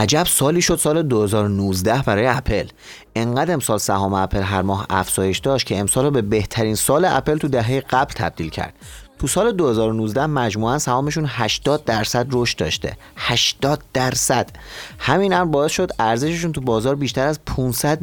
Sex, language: male, Persian